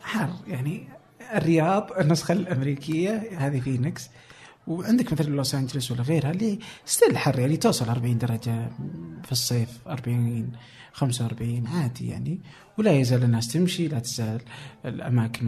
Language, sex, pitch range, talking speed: Arabic, male, 125-165 Hz, 130 wpm